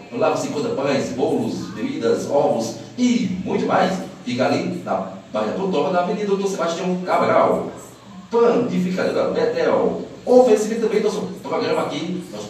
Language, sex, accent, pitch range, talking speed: Portuguese, male, Brazilian, 180-235 Hz, 155 wpm